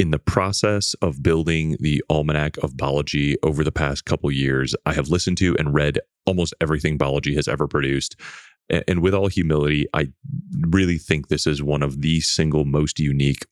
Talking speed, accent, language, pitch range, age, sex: 180 wpm, American, English, 75-85 Hz, 30-49, male